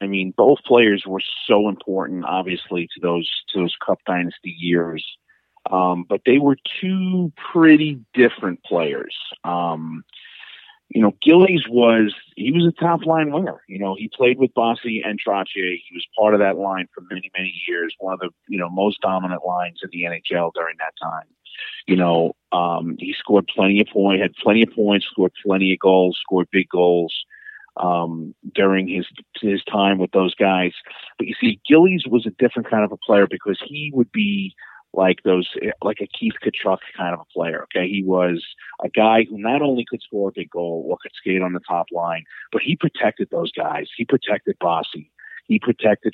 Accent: American